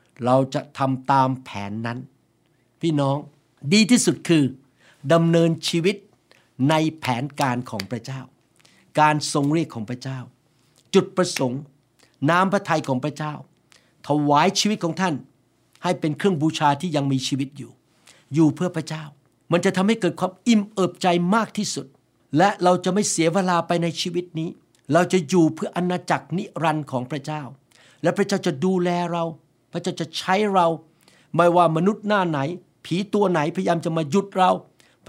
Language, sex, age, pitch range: Thai, male, 60-79, 135-180 Hz